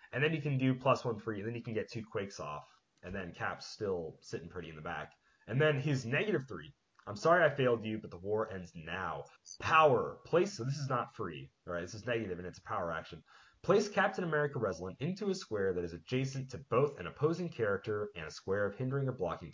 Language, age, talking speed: English, 30-49, 240 wpm